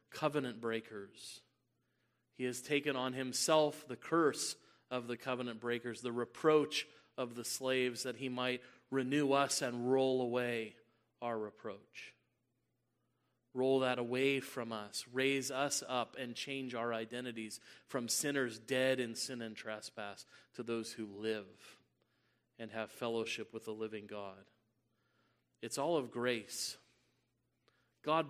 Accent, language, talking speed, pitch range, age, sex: American, English, 135 wpm, 115-130 Hz, 30-49, male